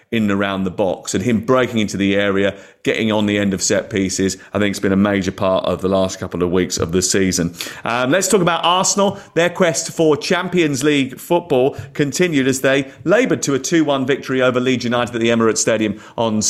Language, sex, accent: English, male, British